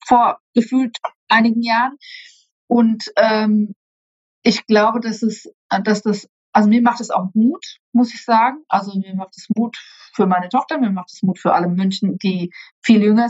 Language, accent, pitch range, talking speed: German, German, 190-230 Hz, 175 wpm